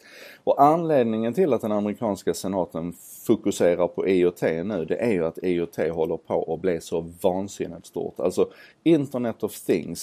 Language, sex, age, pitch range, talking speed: Swedish, male, 30-49, 85-105 Hz, 160 wpm